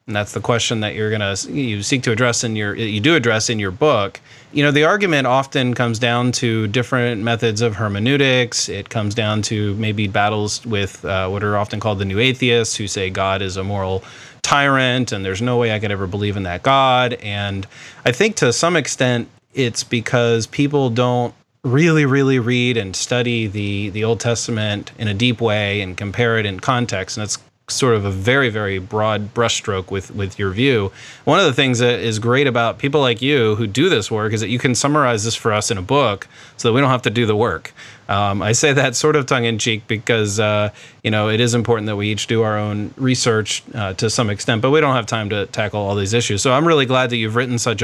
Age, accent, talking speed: 30-49, American, 230 wpm